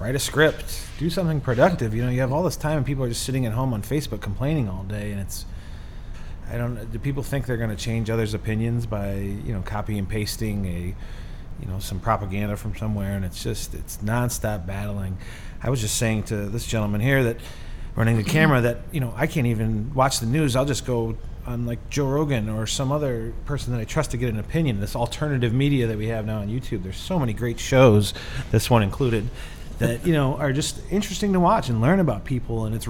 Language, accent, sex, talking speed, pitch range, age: English, American, male, 230 wpm, 105-145 Hz, 30-49